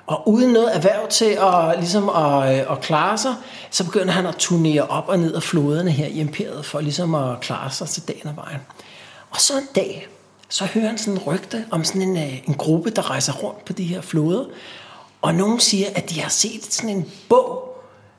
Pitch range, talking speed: 150-195 Hz, 215 wpm